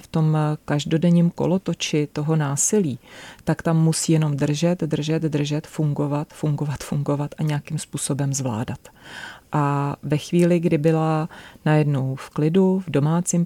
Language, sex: Czech, female